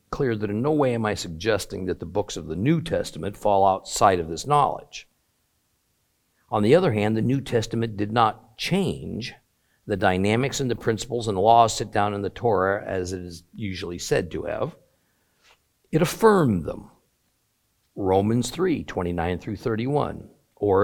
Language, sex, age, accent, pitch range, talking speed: English, male, 50-69, American, 95-120 Hz, 165 wpm